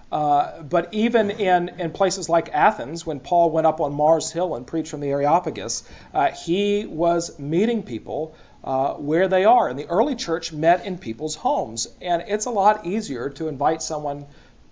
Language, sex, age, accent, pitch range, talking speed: English, male, 40-59, American, 155-200 Hz, 190 wpm